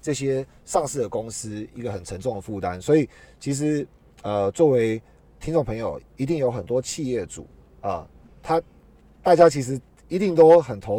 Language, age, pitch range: Chinese, 30-49, 100-160 Hz